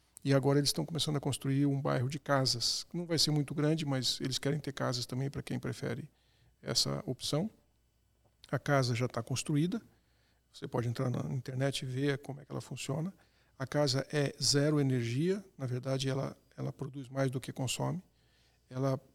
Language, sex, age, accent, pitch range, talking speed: Portuguese, male, 50-69, Brazilian, 130-150 Hz, 185 wpm